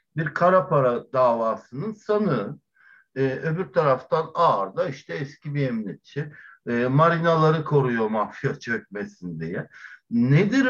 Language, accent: Turkish, native